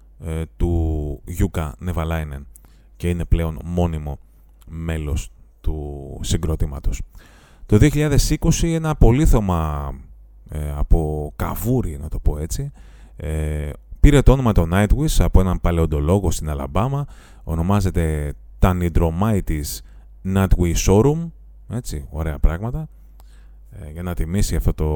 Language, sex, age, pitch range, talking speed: Greek, male, 30-49, 80-105 Hz, 100 wpm